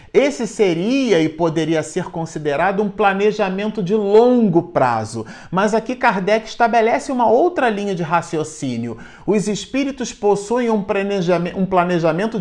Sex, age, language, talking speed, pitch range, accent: male, 40-59, Portuguese, 120 wpm, 165-220 Hz, Brazilian